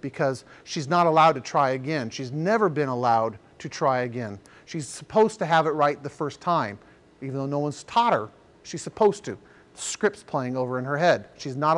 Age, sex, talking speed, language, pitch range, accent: 40-59, male, 205 wpm, English, 140-180 Hz, American